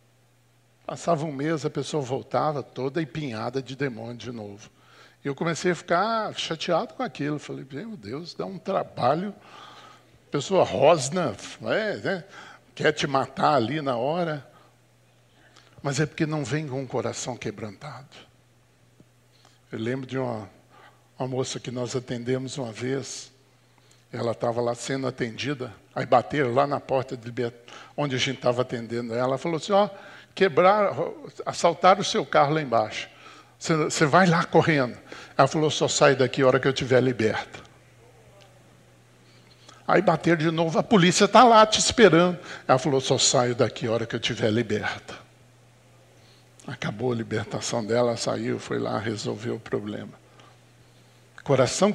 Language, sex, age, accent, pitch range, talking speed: Portuguese, male, 60-79, Brazilian, 125-160 Hz, 150 wpm